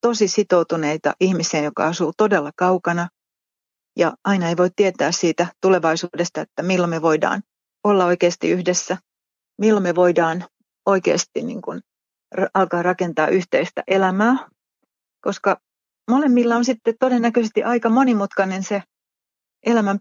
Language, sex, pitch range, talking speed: Finnish, female, 180-210 Hz, 115 wpm